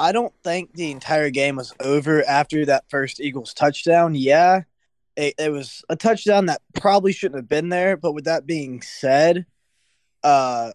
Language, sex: English, male